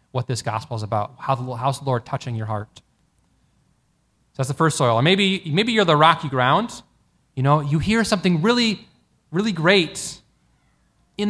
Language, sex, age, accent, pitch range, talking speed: English, male, 20-39, American, 125-160 Hz, 180 wpm